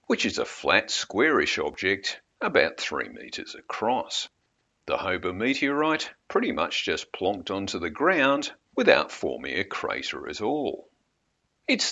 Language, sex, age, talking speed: English, male, 50-69, 135 wpm